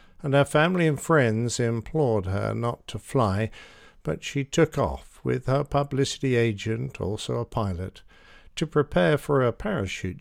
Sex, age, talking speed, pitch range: male, 50-69, 155 wpm, 105-145 Hz